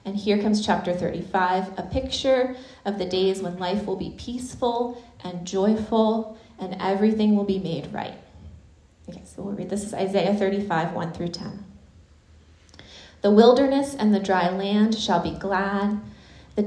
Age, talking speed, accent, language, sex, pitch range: 30-49, 155 wpm, American, English, female, 180-220 Hz